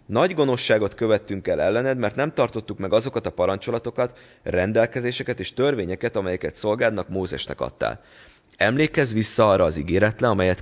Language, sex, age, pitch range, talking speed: Hungarian, male, 30-49, 95-115 Hz, 140 wpm